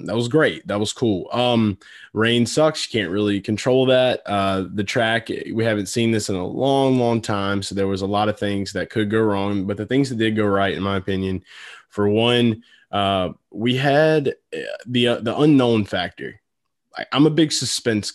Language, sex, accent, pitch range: English, male, American, 100-130 Hz